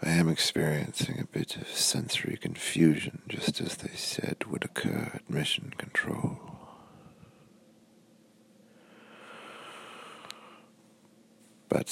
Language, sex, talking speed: English, male, 90 wpm